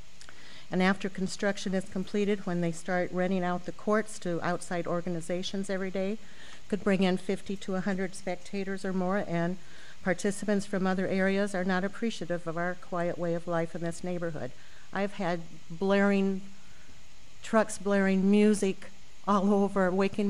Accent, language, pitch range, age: American, English, 170-200 Hz, 50-69